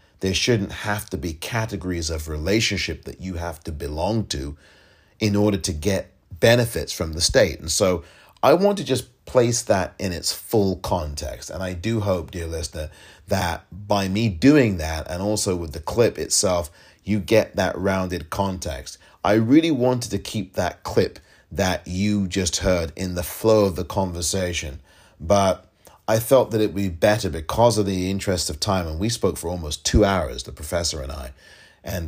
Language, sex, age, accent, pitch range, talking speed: English, male, 30-49, British, 85-105 Hz, 185 wpm